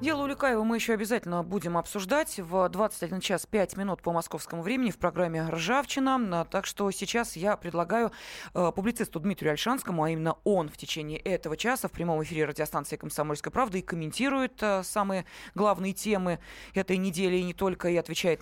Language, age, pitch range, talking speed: Russian, 20-39, 165-220 Hz, 165 wpm